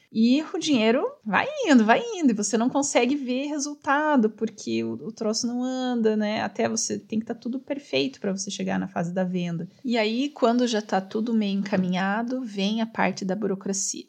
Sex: female